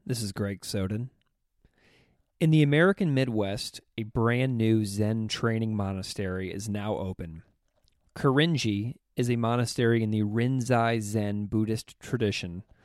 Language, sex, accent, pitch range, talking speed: English, male, American, 105-135 Hz, 125 wpm